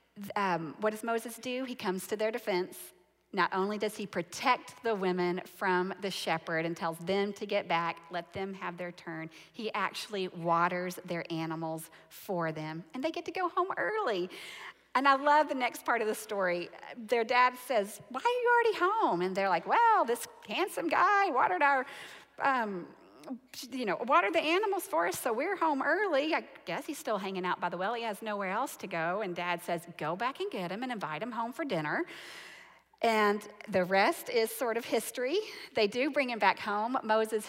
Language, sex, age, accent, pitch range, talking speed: English, female, 40-59, American, 175-260 Hz, 200 wpm